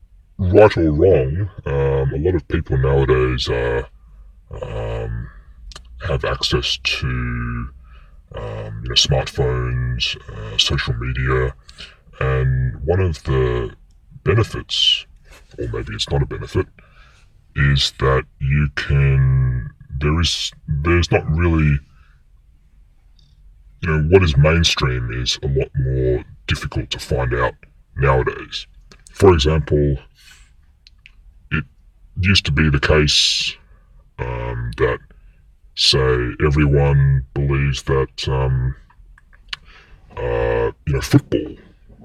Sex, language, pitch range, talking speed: female, English, 65-80 Hz, 95 wpm